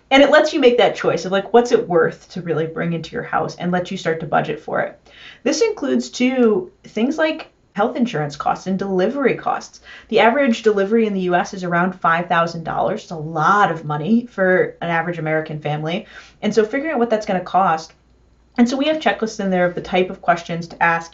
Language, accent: English, American